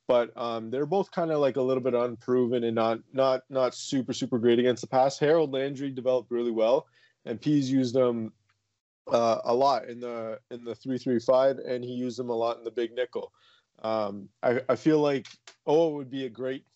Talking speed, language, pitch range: 215 wpm, English, 110-130 Hz